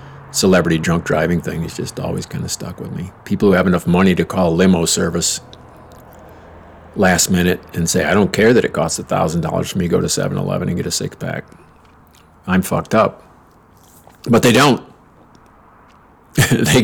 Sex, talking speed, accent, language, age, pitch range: male, 175 wpm, American, English, 50-69, 90-115 Hz